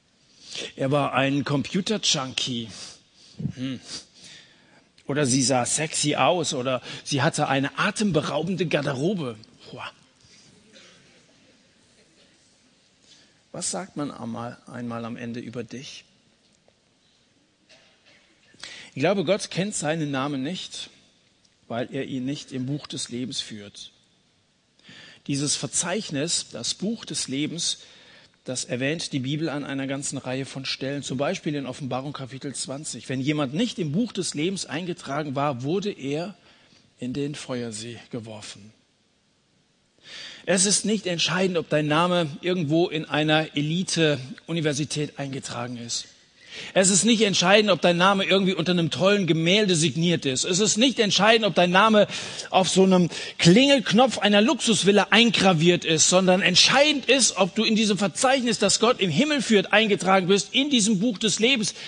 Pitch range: 135-195 Hz